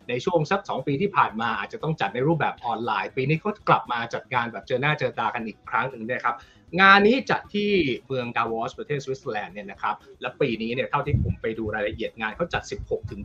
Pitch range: 120-175 Hz